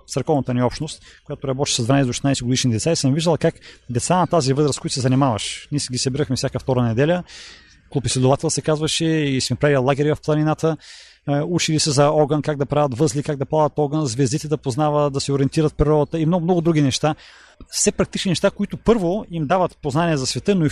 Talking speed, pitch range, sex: 205 wpm, 135-165 Hz, male